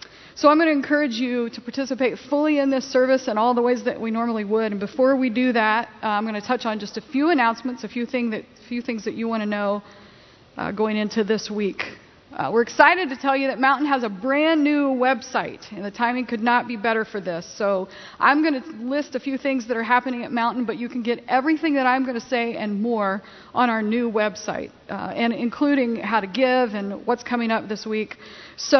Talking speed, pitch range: 235 wpm, 225-260 Hz